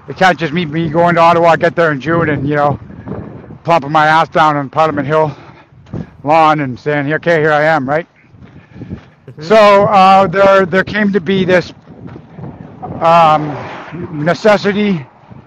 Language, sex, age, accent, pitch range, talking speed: English, male, 60-79, American, 155-180 Hz, 155 wpm